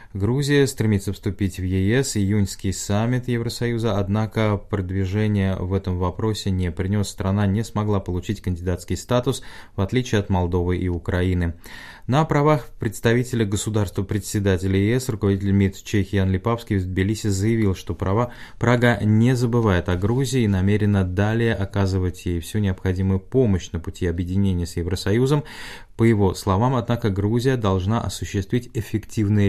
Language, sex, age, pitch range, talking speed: Russian, male, 20-39, 95-115 Hz, 135 wpm